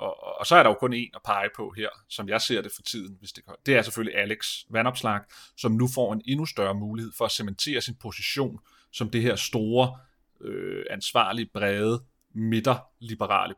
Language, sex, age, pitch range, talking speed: Danish, male, 30-49, 105-130 Hz, 205 wpm